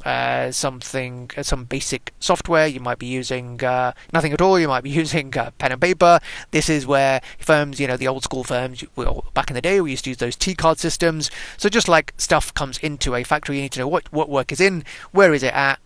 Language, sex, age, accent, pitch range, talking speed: English, male, 30-49, British, 130-160 Hz, 240 wpm